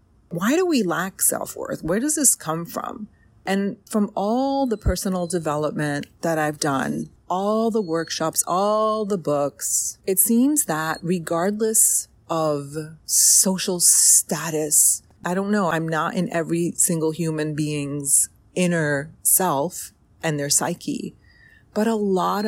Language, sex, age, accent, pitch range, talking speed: English, female, 30-49, American, 155-210 Hz, 135 wpm